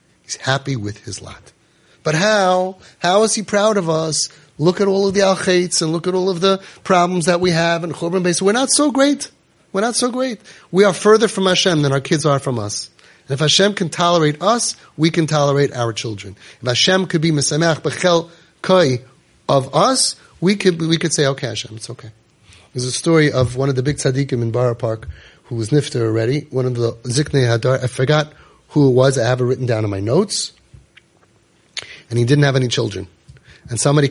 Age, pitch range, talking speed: 30-49, 120-175 Hz, 210 wpm